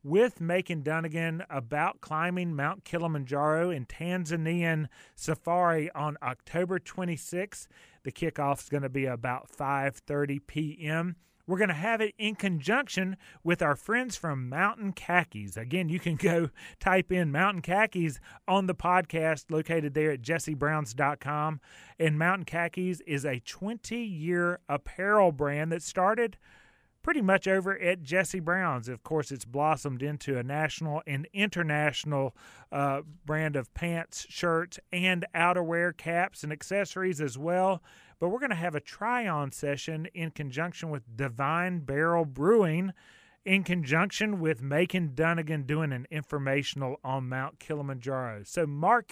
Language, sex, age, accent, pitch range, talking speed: English, male, 30-49, American, 145-180 Hz, 135 wpm